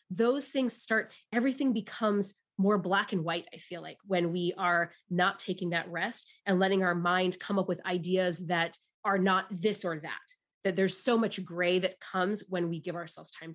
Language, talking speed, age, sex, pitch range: English, 200 wpm, 20-39, female, 175-195 Hz